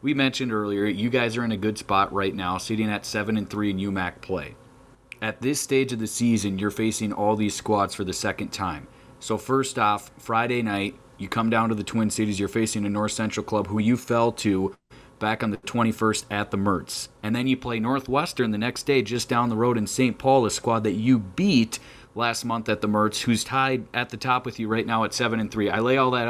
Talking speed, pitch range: 240 wpm, 105-125 Hz